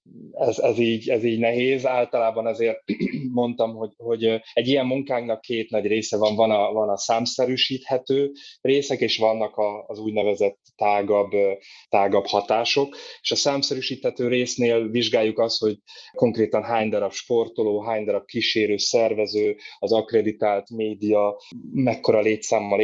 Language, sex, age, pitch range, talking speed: Hungarian, male, 20-39, 105-120 Hz, 135 wpm